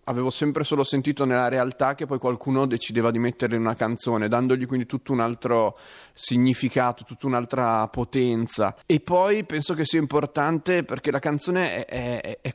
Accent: native